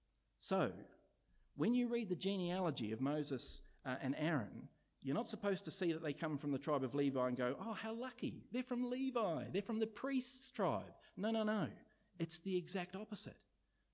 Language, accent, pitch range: English, Australian, 145-195 Hz